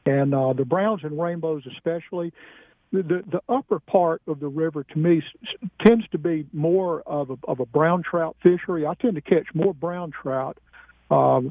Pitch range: 140-180 Hz